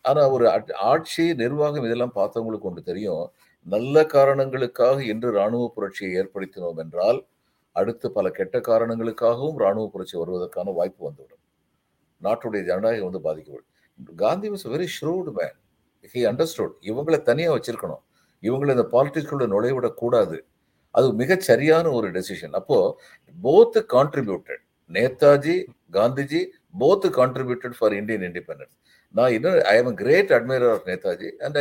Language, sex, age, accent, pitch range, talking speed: Tamil, male, 50-69, native, 115-190 Hz, 110 wpm